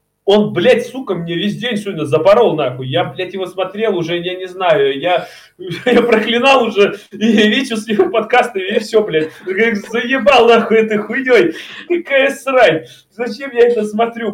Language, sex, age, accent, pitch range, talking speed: Russian, male, 20-39, native, 150-210 Hz, 160 wpm